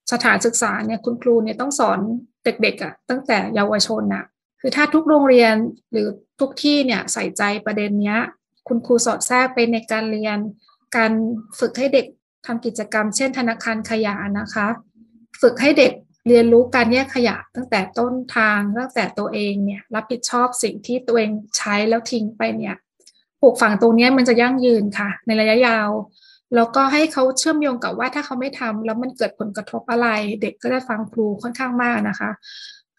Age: 20-39